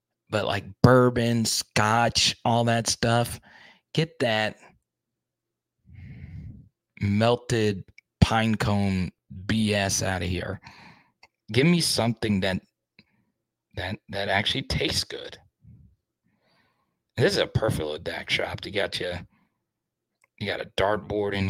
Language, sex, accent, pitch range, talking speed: English, male, American, 100-120 Hz, 110 wpm